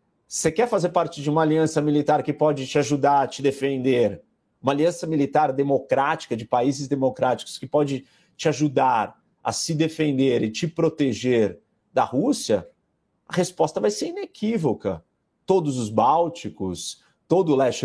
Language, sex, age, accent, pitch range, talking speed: Portuguese, male, 40-59, Brazilian, 125-165 Hz, 150 wpm